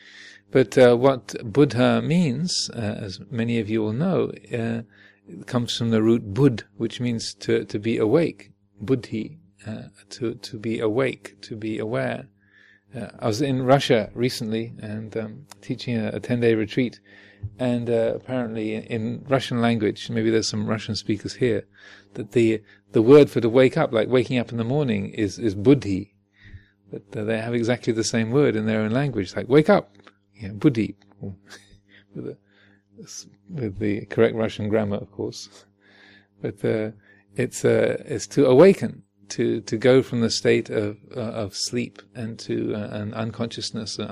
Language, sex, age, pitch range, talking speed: English, male, 40-59, 105-125 Hz, 170 wpm